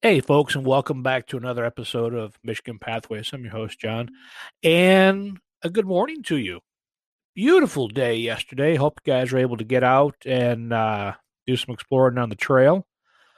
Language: English